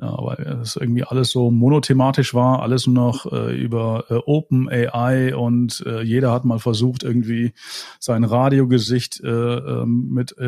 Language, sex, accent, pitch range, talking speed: German, male, German, 110-125 Hz, 160 wpm